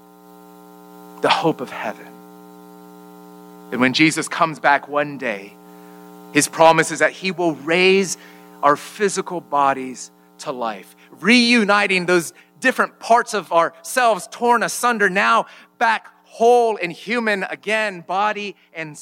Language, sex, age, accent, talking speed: English, male, 40-59, American, 125 wpm